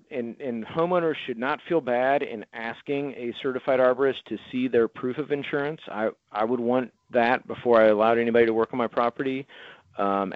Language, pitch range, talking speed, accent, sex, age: English, 110-135 Hz, 190 wpm, American, male, 40-59